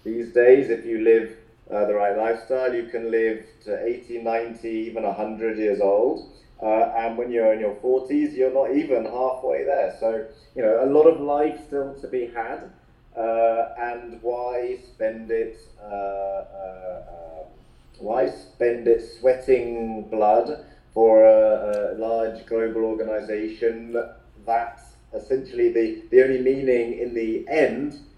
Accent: British